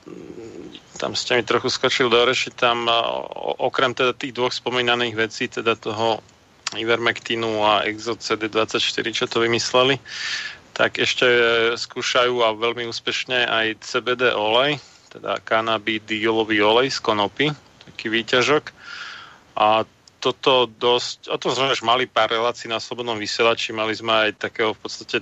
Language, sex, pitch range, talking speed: Slovak, male, 110-120 Hz, 130 wpm